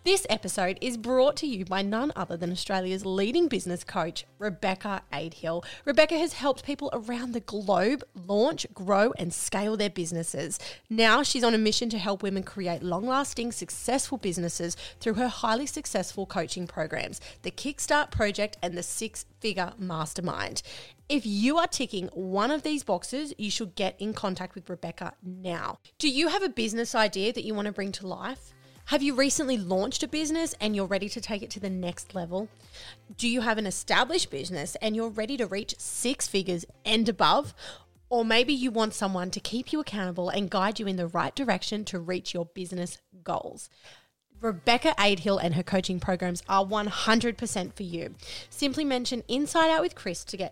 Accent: Australian